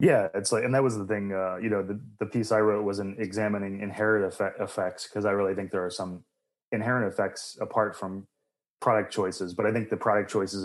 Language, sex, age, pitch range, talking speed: English, male, 30-49, 100-115 Hz, 235 wpm